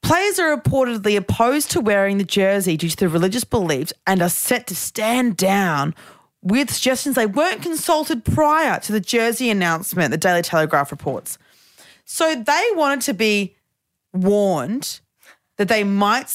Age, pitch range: 30-49, 195-285 Hz